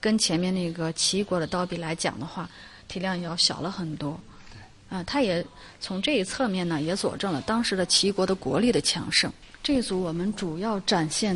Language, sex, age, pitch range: Chinese, female, 30-49, 165-215 Hz